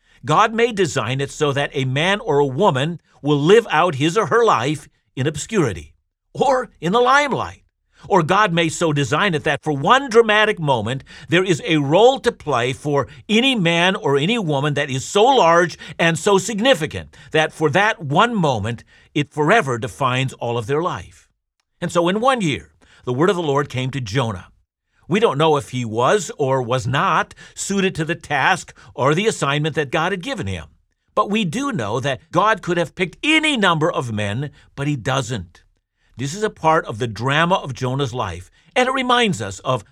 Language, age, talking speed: English, 50-69, 195 wpm